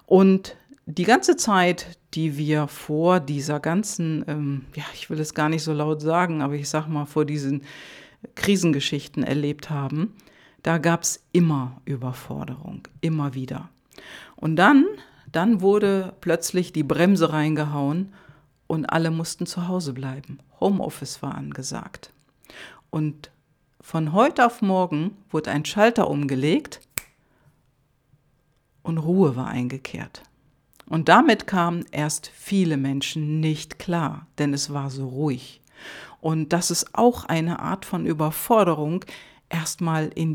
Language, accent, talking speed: German, German, 130 wpm